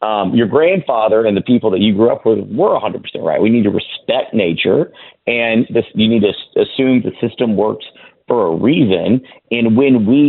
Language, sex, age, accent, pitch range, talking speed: English, male, 40-59, American, 100-125 Hz, 200 wpm